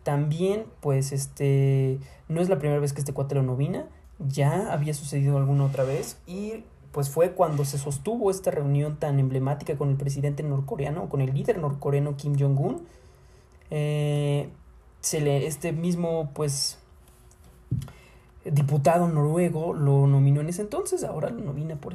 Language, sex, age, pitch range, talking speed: Spanish, male, 20-39, 140-160 Hz, 155 wpm